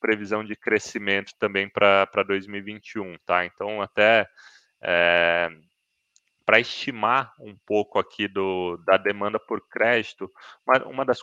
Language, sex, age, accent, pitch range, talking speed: Portuguese, male, 20-39, Brazilian, 95-115 Hz, 125 wpm